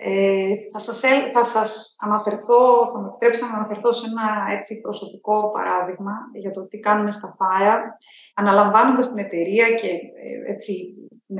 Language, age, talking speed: Greek, 20-39, 140 wpm